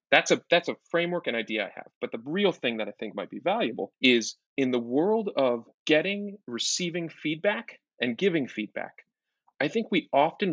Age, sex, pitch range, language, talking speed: 30-49, male, 115-160 Hz, English, 195 wpm